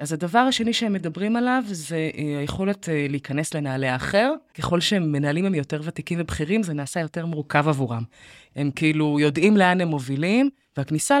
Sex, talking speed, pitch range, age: female, 155 wpm, 145-215 Hz, 20-39